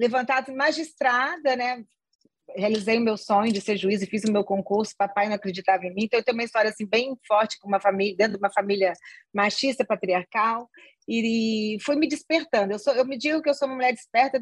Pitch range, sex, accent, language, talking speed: 210-275 Hz, female, Brazilian, Portuguese, 215 wpm